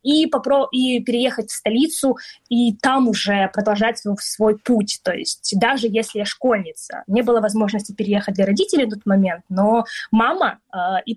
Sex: female